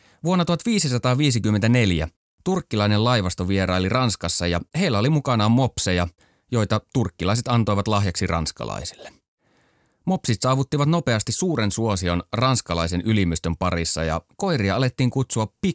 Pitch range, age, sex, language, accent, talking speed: 90-125 Hz, 30-49, male, Finnish, native, 105 wpm